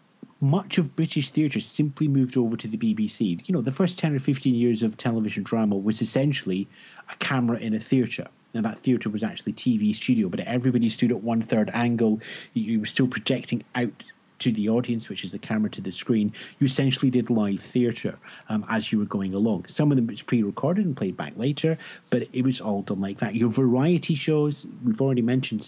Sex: male